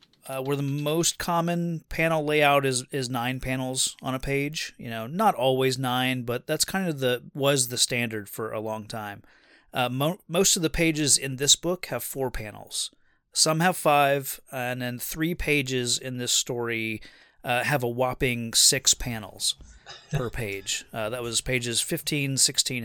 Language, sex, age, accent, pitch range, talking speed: English, male, 30-49, American, 120-145 Hz, 175 wpm